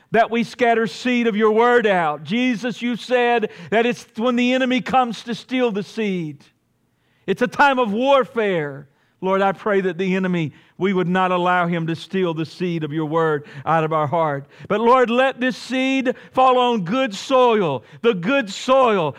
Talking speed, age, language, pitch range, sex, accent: 190 wpm, 50-69, English, 135-205 Hz, male, American